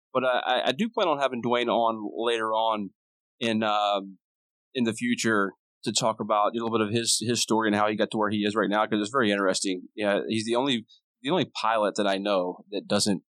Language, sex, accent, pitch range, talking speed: English, male, American, 100-120 Hz, 235 wpm